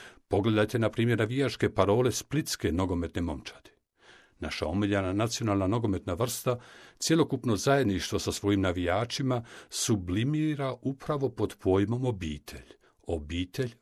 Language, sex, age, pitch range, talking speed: Croatian, male, 60-79, 95-130 Hz, 105 wpm